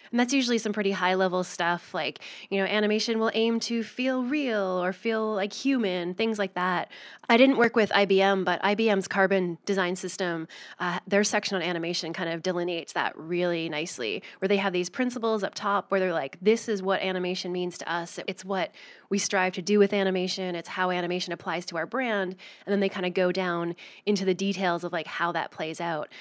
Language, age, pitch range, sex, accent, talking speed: English, 20-39, 175-205 Hz, female, American, 210 wpm